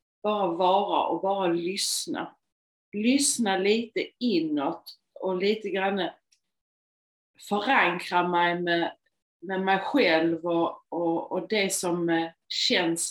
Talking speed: 100 wpm